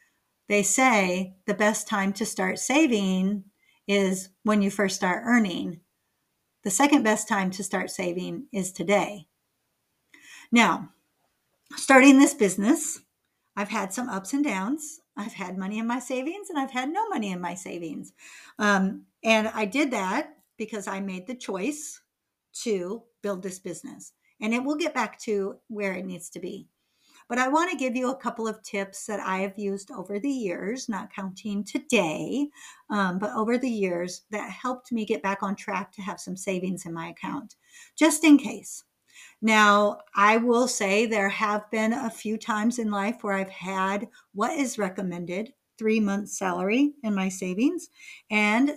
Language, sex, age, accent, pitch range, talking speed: English, female, 50-69, American, 195-250 Hz, 170 wpm